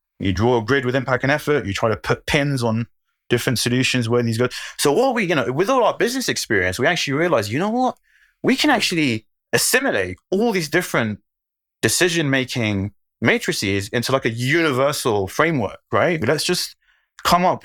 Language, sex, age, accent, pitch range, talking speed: English, male, 20-39, British, 110-145 Hz, 185 wpm